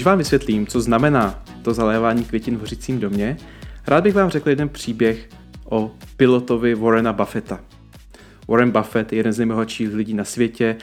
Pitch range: 110-135 Hz